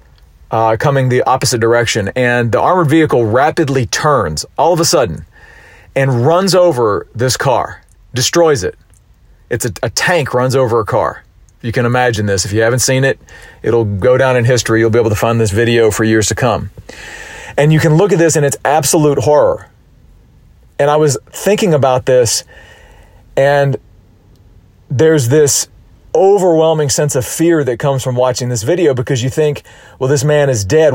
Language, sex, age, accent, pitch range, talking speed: English, male, 40-59, American, 110-150 Hz, 180 wpm